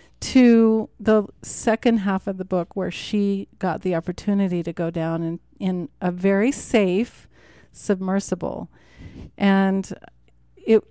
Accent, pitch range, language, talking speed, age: American, 170-215 Hz, English, 125 wpm, 40-59